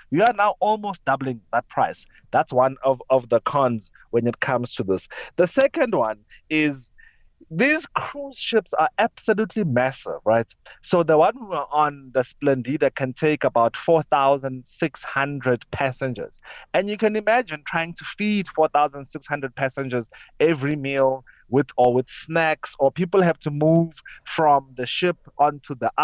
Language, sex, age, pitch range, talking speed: English, male, 30-49, 135-190 Hz, 155 wpm